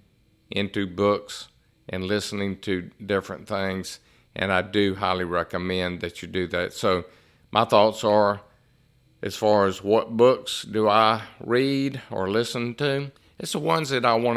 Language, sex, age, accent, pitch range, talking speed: English, male, 50-69, American, 95-120 Hz, 155 wpm